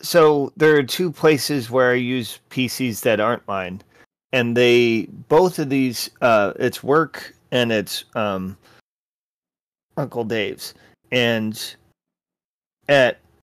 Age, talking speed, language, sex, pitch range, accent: 30-49, 120 wpm, English, male, 120-170 Hz, American